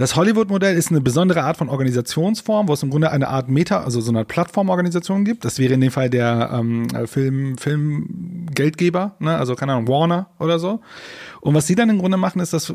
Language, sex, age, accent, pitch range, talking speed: German, male, 30-49, German, 145-190 Hz, 210 wpm